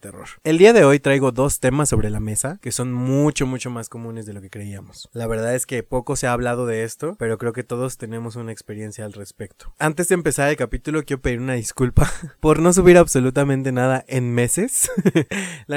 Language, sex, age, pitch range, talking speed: Spanish, male, 20-39, 115-140 Hz, 215 wpm